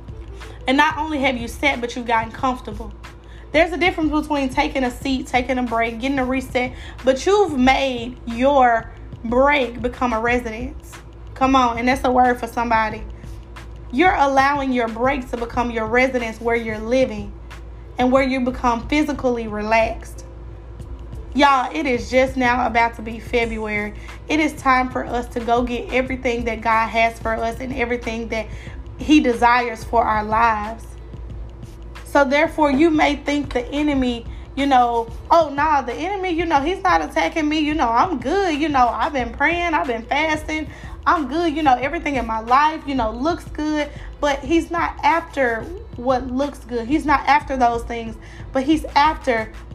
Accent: American